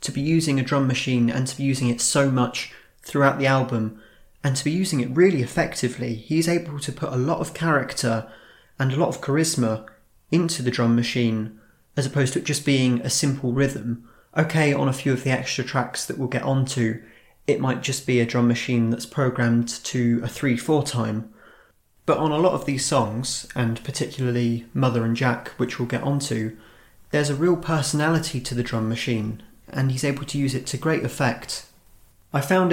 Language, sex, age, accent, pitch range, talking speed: English, male, 30-49, British, 115-135 Hz, 200 wpm